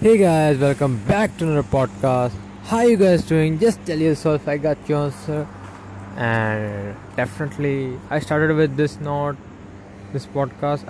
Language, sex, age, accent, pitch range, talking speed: English, male, 20-39, Indian, 100-140 Hz, 150 wpm